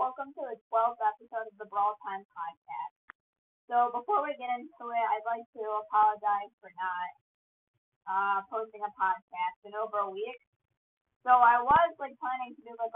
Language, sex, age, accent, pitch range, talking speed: English, female, 20-39, American, 205-250 Hz, 175 wpm